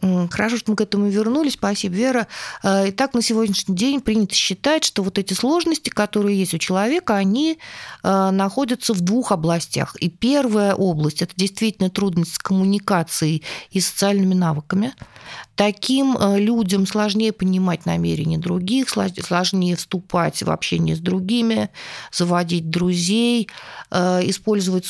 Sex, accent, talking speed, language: female, native, 130 wpm, Russian